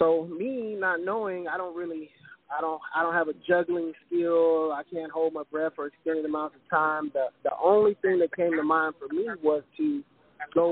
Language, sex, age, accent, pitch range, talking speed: English, male, 20-39, American, 155-180 Hz, 215 wpm